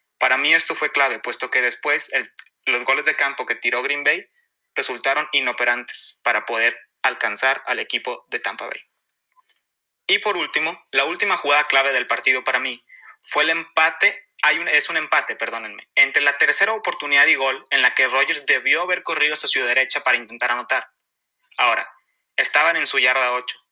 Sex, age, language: male, 20-39, Spanish